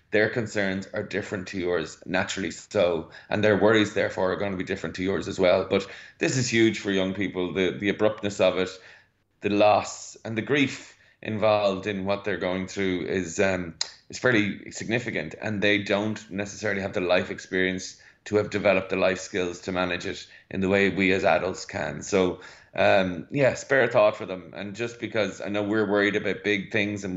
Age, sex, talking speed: 30-49, male, 205 wpm